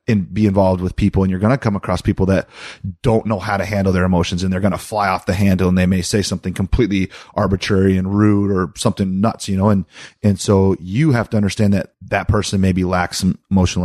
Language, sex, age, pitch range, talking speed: English, male, 30-49, 90-105 Hz, 245 wpm